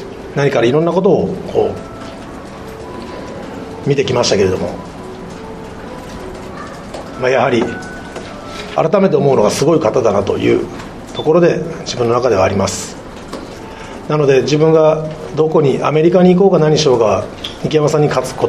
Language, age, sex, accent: Japanese, 40-59, male, native